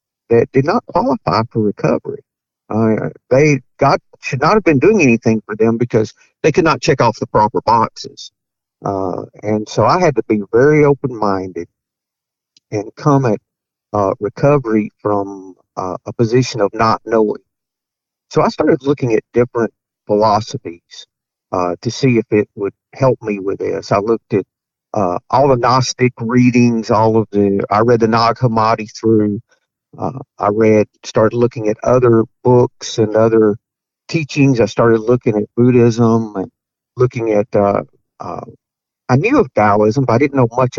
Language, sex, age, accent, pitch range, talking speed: English, male, 50-69, American, 105-125 Hz, 165 wpm